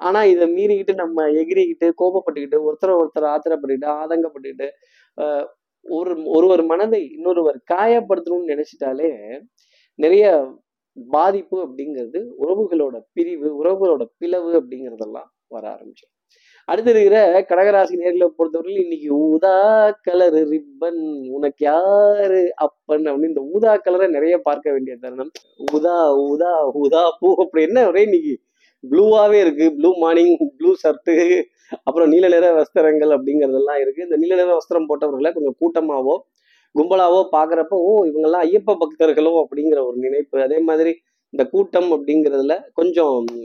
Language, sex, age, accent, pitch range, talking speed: Tamil, male, 20-39, native, 150-190 Hz, 120 wpm